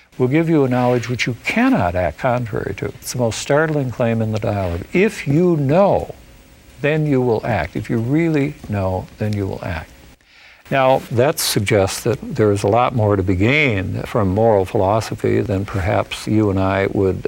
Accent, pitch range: American, 105-150 Hz